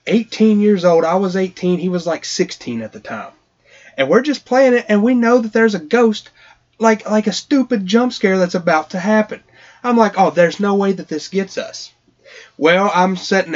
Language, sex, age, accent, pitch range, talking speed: English, male, 30-49, American, 165-245 Hz, 215 wpm